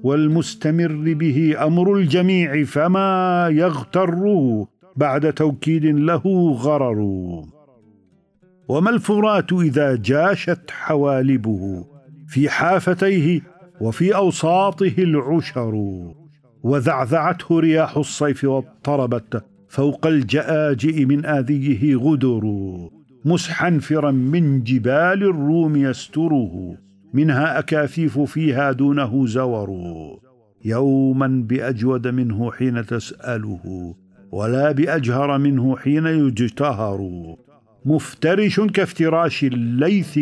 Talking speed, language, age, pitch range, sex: 80 wpm, Arabic, 50-69, 120-160 Hz, male